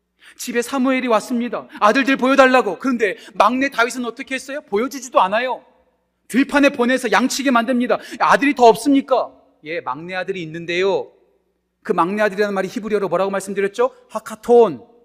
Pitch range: 190-255 Hz